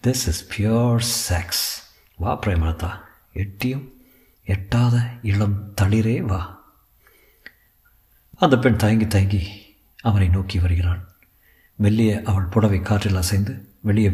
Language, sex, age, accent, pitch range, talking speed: Tamil, male, 50-69, native, 95-120 Hz, 100 wpm